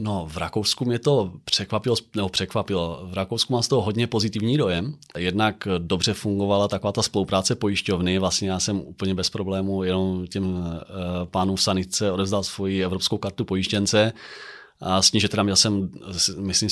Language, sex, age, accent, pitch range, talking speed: Czech, male, 30-49, native, 95-110 Hz, 165 wpm